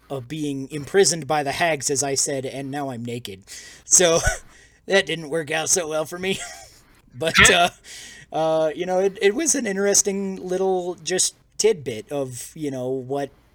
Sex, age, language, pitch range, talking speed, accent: male, 30-49, English, 130-160 Hz, 175 wpm, American